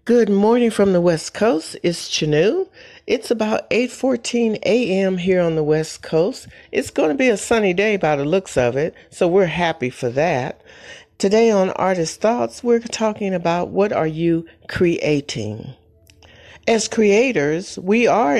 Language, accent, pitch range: English, American, 145-225 Hz